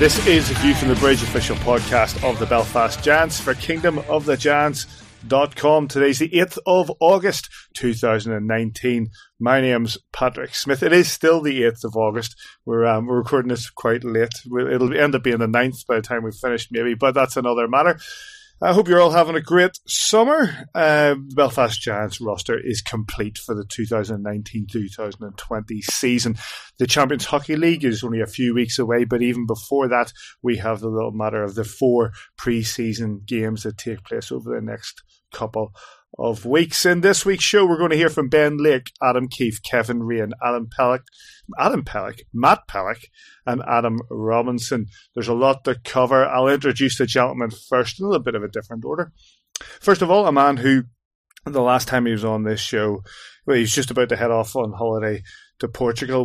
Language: English